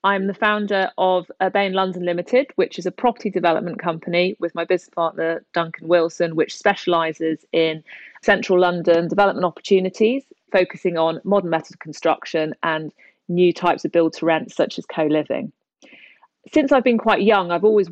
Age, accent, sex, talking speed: 30-49, British, female, 160 wpm